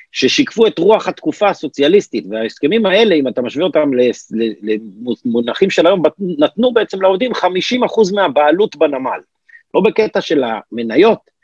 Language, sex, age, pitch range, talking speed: Hebrew, male, 50-69, 135-225 Hz, 125 wpm